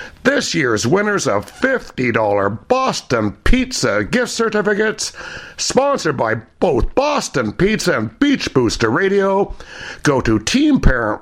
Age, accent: 60-79, American